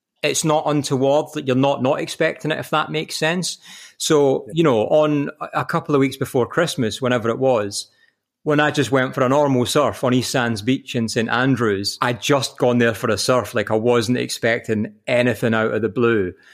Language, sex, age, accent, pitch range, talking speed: English, male, 30-49, British, 115-150 Hz, 205 wpm